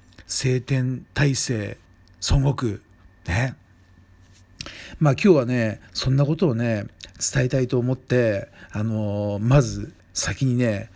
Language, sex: Japanese, male